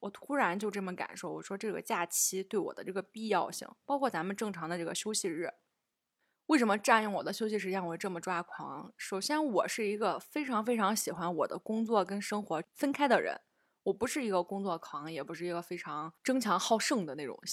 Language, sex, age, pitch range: Chinese, female, 20-39, 175-225 Hz